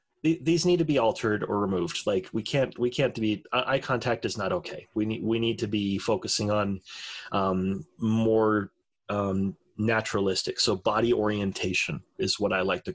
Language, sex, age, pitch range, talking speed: English, male, 30-49, 105-130 Hz, 175 wpm